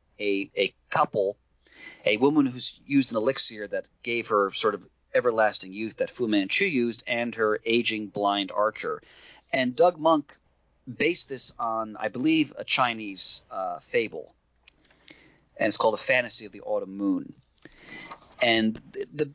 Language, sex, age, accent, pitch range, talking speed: English, male, 30-49, American, 110-145 Hz, 150 wpm